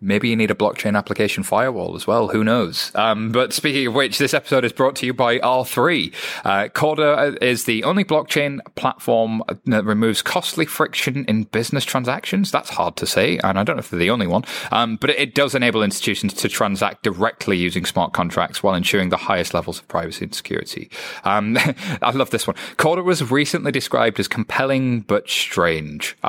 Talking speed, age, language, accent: 200 wpm, 30-49, English, British